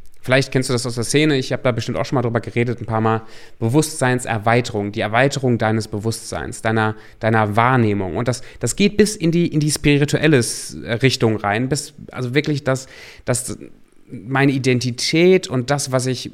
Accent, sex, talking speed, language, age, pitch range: German, male, 185 wpm, German, 30-49, 115-150 Hz